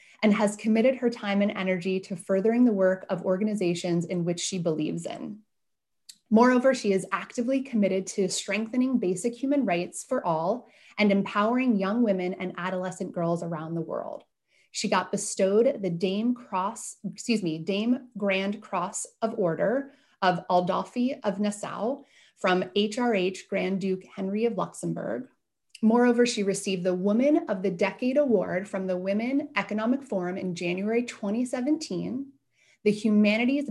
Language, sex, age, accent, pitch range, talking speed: English, female, 30-49, American, 185-235 Hz, 150 wpm